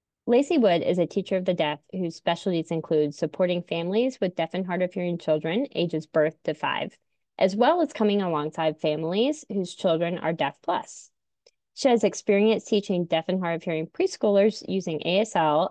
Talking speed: 180 wpm